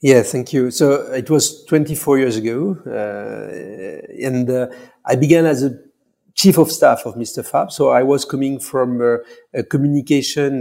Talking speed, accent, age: 170 wpm, French, 50-69